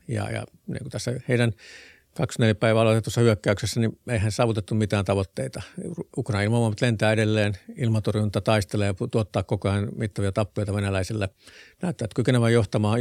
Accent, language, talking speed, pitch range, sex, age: native, Finnish, 150 wpm, 100-120 Hz, male, 50-69